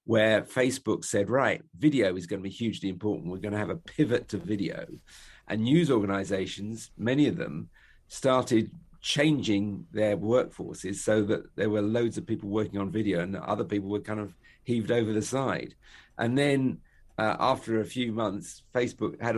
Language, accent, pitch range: English, British, 100-120 Hz